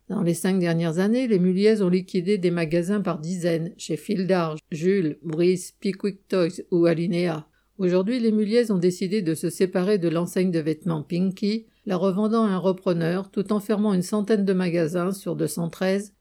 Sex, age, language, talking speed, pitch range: female, 50-69, French, 180 wpm, 170-195 Hz